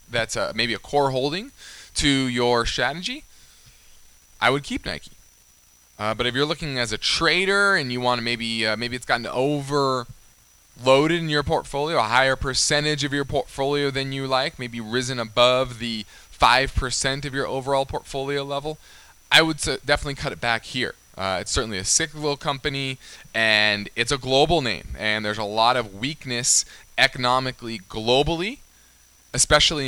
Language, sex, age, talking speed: English, male, 20-39, 165 wpm